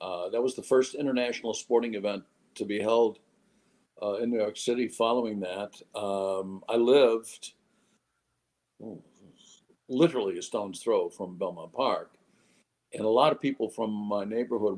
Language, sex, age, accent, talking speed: English, male, 50-69, American, 150 wpm